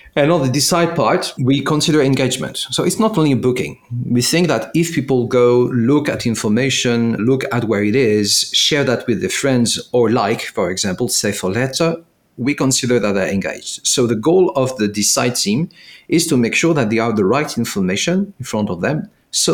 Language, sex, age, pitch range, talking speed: Italian, male, 40-59, 120-155 Hz, 205 wpm